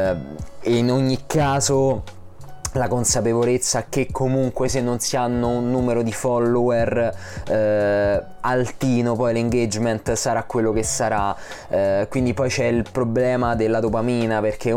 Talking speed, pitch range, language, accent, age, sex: 135 wpm, 95-125 Hz, Italian, native, 20-39, male